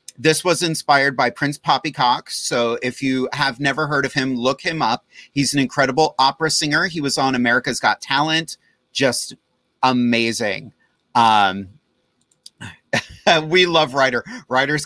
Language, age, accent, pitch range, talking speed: English, 30-49, American, 120-150 Hz, 140 wpm